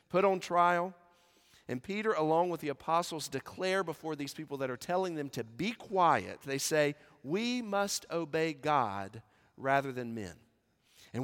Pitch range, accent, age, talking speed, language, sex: 140-190 Hz, American, 40-59, 160 wpm, English, male